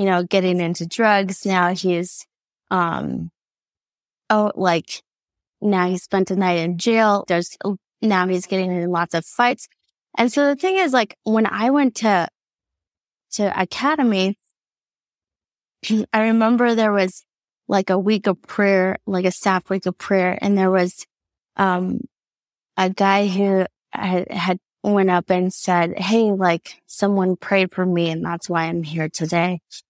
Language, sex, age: English, female, 20-39